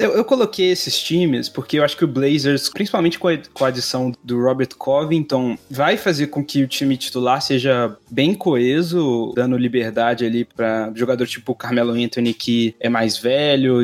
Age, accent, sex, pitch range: 20-39, Brazilian, male, 125-155 Hz